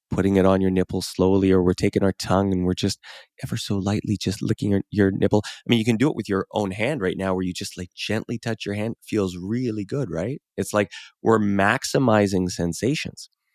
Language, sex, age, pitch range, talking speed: English, male, 20-39, 90-110 Hz, 230 wpm